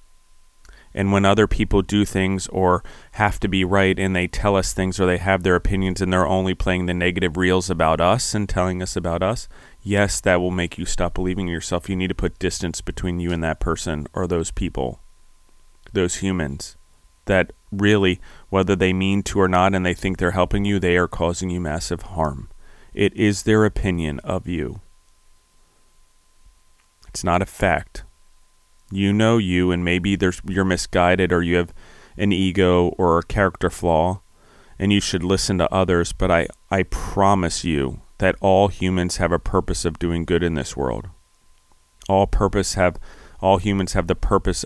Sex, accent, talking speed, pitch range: male, American, 185 wpm, 85-95 Hz